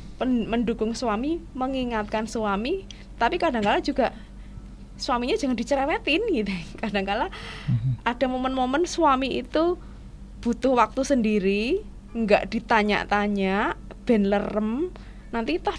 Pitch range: 185-230 Hz